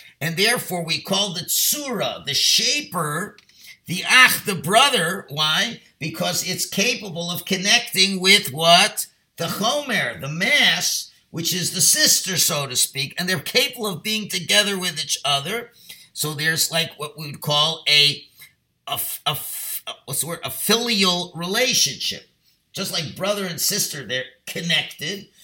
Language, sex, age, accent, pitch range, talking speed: English, male, 50-69, American, 145-190 Hz, 150 wpm